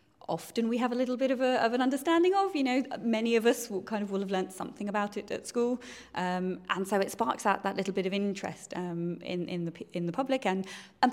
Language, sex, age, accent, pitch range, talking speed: English, female, 20-39, British, 170-210 Hz, 260 wpm